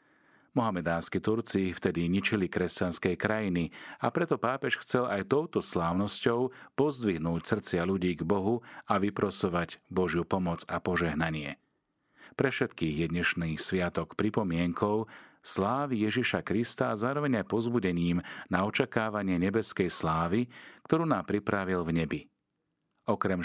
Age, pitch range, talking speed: 40-59, 85-110 Hz, 120 wpm